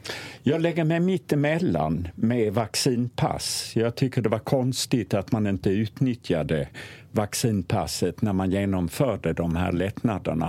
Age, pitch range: 50-69, 95-140 Hz